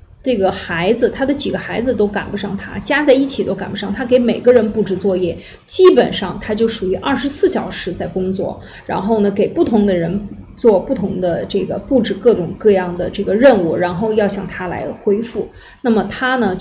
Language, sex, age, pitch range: Chinese, female, 20-39, 190-245 Hz